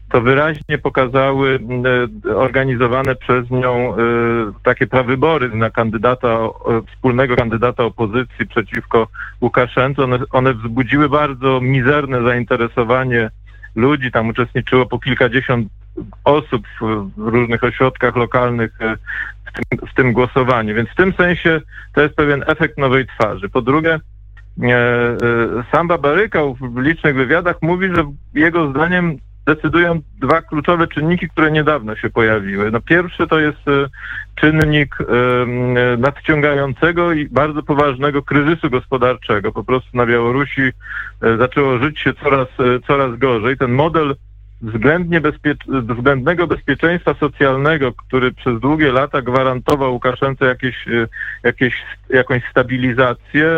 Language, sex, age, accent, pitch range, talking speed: Polish, male, 40-59, native, 120-145 Hz, 115 wpm